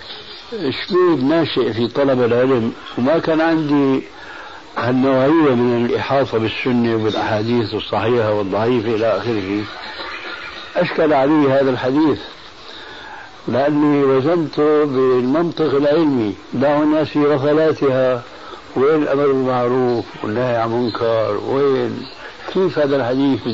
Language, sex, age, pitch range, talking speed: Arabic, male, 60-79, 120-150 Hz, 100 wpm